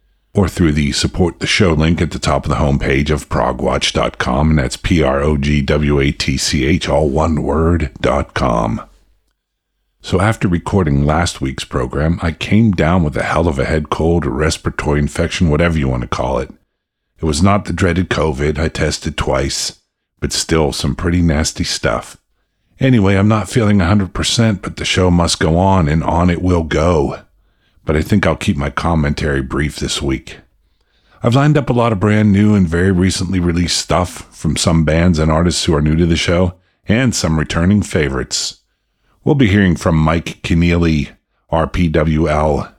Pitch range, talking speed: 75-95 Hz, 175 wpm